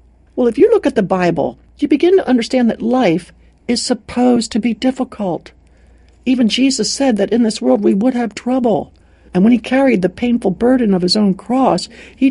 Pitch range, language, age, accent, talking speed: 180-265 Hz, English, 60-79, American, 200 wpm